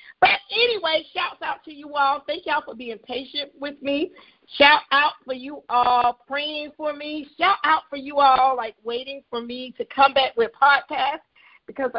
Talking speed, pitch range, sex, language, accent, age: 190 wpm, 250-310 Hz, female, English, American, 40-59